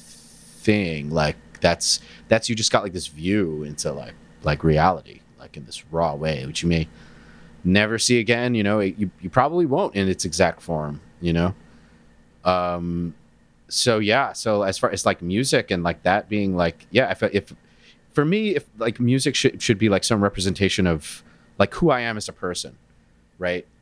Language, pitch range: English, 80-120 Hz